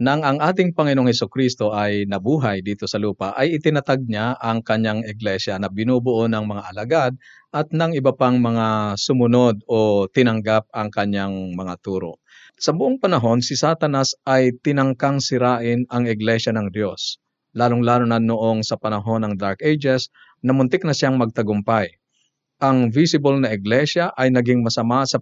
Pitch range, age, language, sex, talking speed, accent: 115-135 Hz, 50-69, Filipino, male, 155 wpm, native